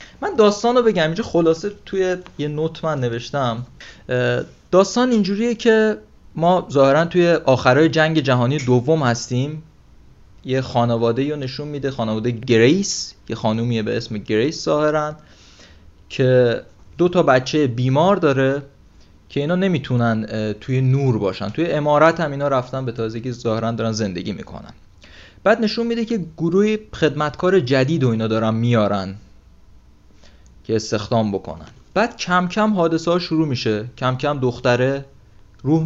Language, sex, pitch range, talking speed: Persian, male, 110-155 Hz, 135 wpm